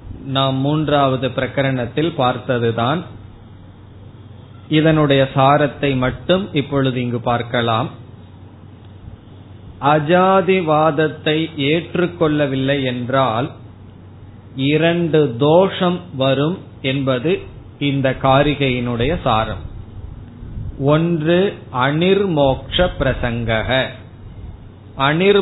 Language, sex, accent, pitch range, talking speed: Tamil, male, native, 115-155 Hz, 55 wpm